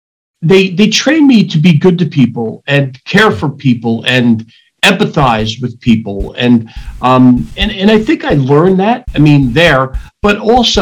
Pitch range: 125-180 Hz